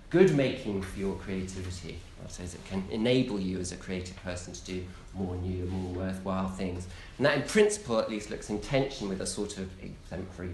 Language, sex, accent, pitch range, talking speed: English, male, British, 90-110 Hz, 205 wpm